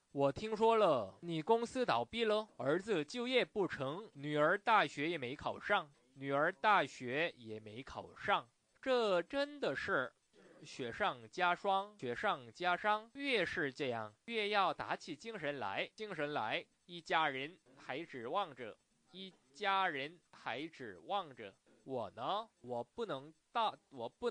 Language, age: Korean, 20-39